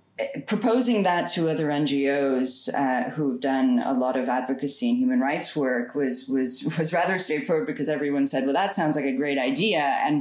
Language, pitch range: English, 140-215 Hz